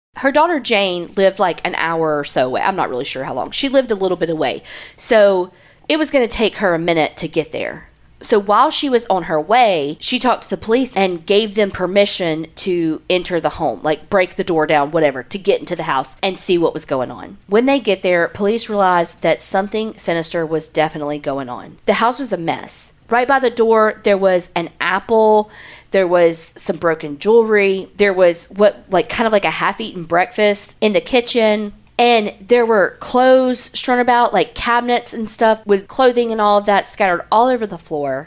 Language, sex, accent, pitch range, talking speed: English, female, American, 165-220 Hz, 215 wpm